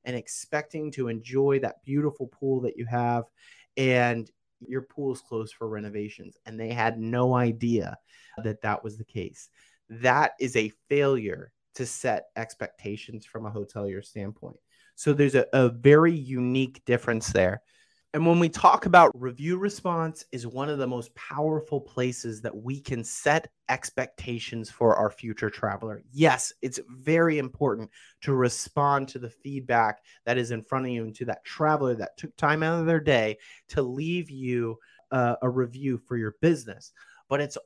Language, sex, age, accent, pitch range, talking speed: English, male, 30-49, American, 115-145 Hz, 170 wpm